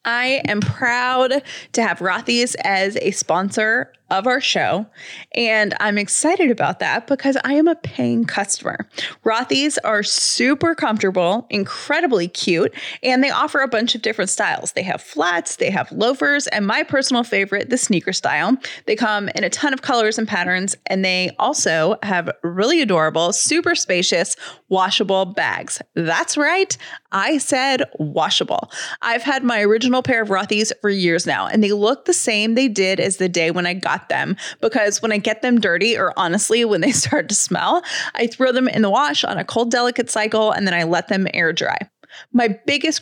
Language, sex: English, female